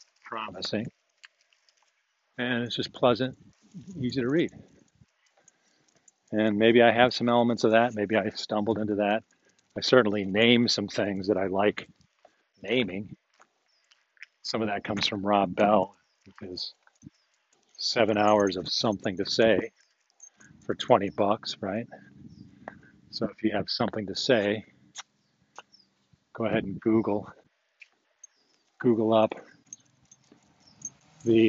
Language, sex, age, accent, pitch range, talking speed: English, male, 50-69, American, 105-120 Hz, 120 wpm